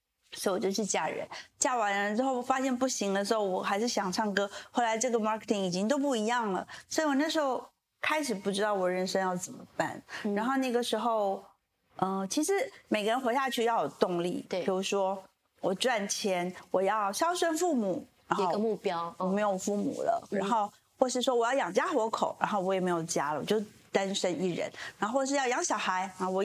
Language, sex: Chinese, female